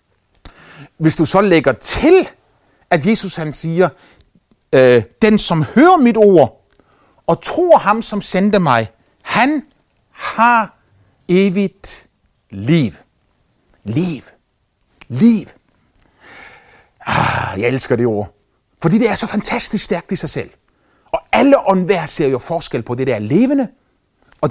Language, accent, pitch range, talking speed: Danish, native, 135-215 Hz, 125 wpm